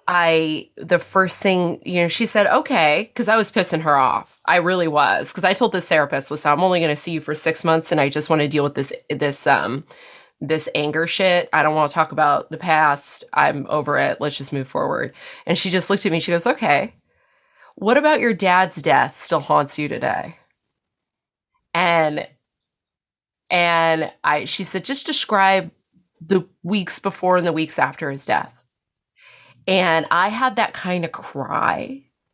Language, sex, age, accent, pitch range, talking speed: English, female, 20-39, American, 150-195 Hz, 190 wpm